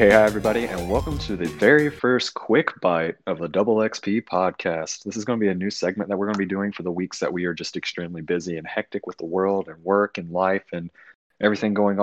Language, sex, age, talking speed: English, male, 20-39, 255 wpm